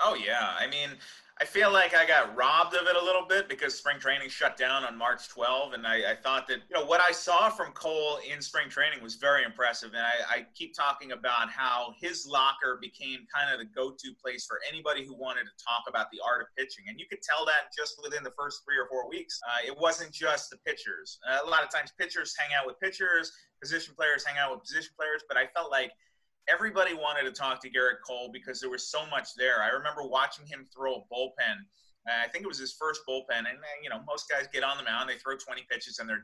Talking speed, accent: 245 wpm, American